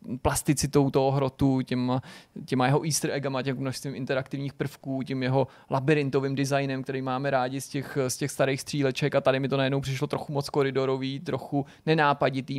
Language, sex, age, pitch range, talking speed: Czech, male, 30-49, 130-145 Hz, 170 wpm